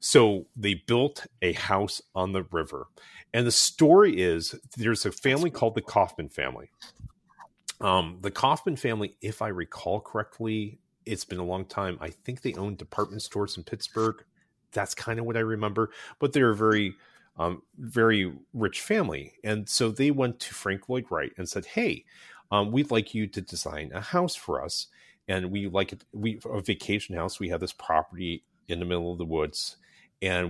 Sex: male